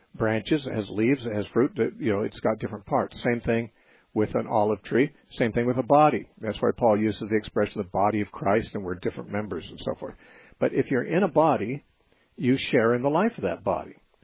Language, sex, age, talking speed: English, male, 60-79, 235 wpm